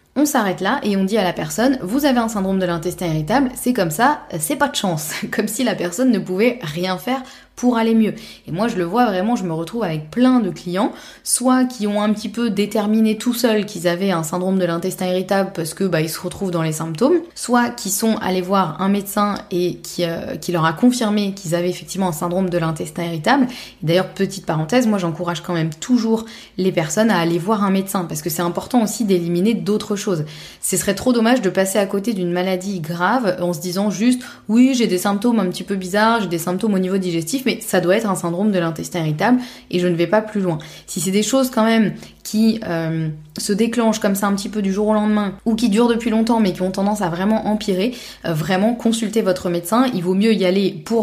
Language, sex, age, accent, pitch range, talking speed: French, female, 20-39, French, 180-225 Hz, 240 wpm